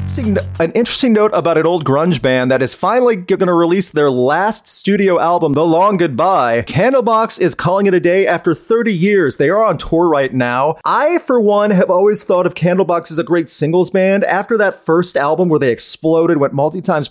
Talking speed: 205 wpm